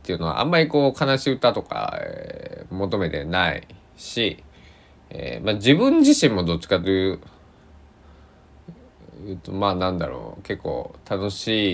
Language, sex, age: Japanese, male, 20-39